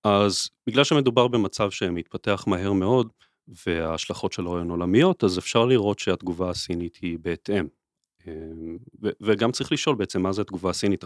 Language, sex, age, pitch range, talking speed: Hebrew, male, 30-49, 95-110 Hz, 145 wpm